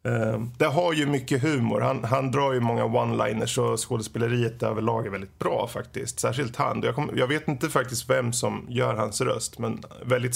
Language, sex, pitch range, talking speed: Swedish, male, 105-130 Hz, 185 wpm